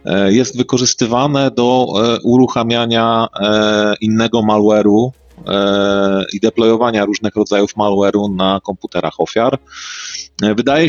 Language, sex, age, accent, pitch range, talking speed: Polish, male, 30-49, native, 100-115 Hz, 85 wpm